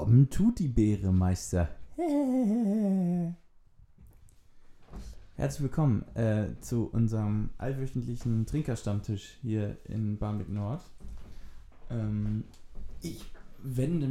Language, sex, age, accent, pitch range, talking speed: German, male, 20-39, German, 100-125 Hz, 75 wpm